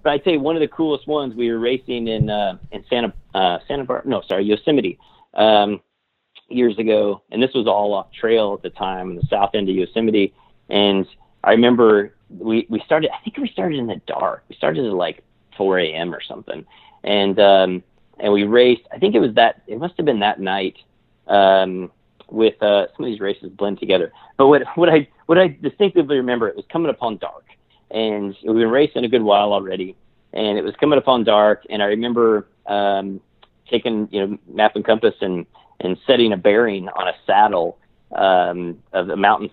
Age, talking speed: 40-59, 200 wpm